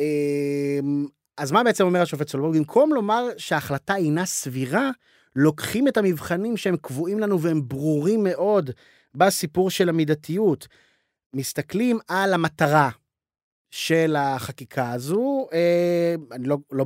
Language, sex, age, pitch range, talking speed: Hebrew, male, 30-49, 145-205 Hz, 115 wpm